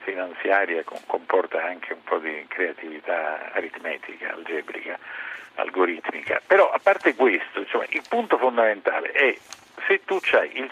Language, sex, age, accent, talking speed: Italian, male, 50-69, native, 135 wpm